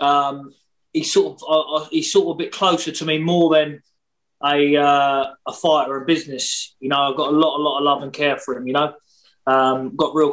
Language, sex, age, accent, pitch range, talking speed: English, male, 20-39, British, 145-170 Hz, 230 wpm